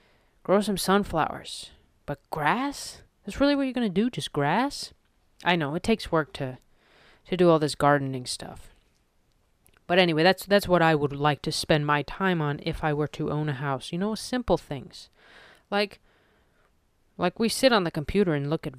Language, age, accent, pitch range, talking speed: English, 30-49, American, 140-190 Hz, 190 wpm